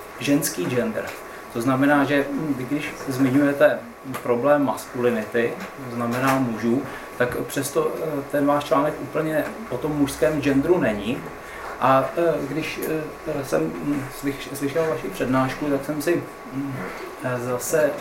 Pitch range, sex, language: 125-145 Hz, male, Czech